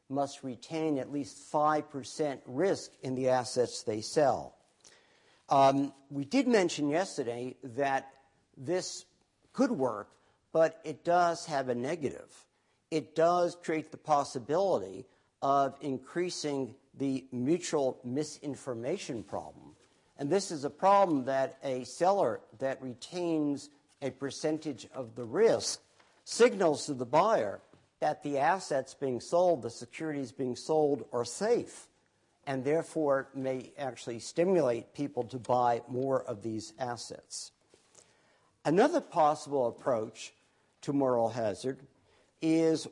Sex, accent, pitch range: male, American, 130-160 Hz